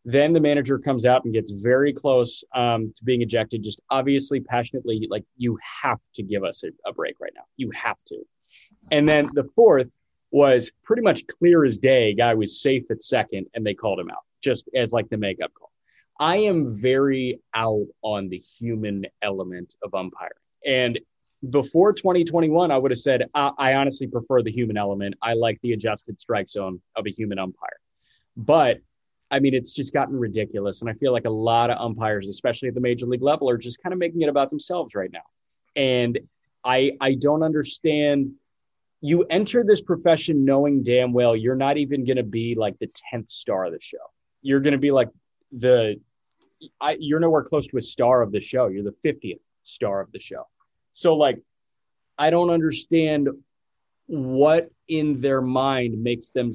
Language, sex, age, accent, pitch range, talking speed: English, male, 30-49, American, 115-145 Hz, 190 wpm